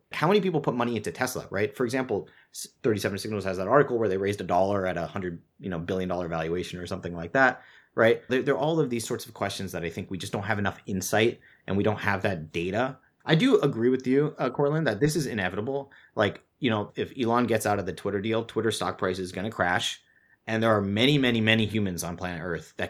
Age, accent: 30-49, American